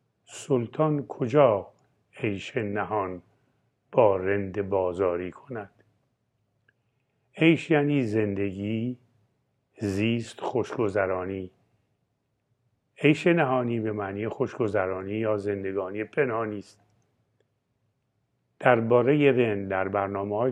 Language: Persian